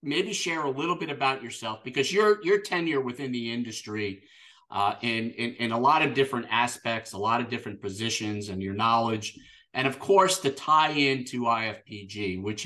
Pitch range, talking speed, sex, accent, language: 110-135 Hz, 195 wpm, male, American, English